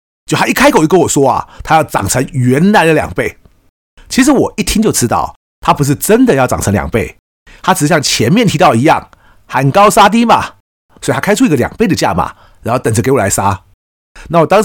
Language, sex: Chinese, male